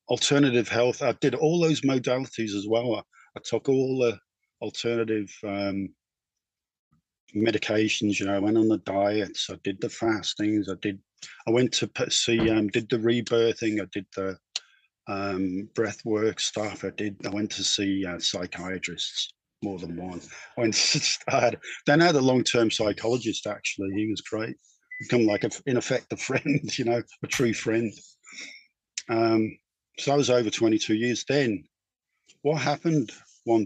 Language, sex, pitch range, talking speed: English, male, 100-120 Hz, 170 wpm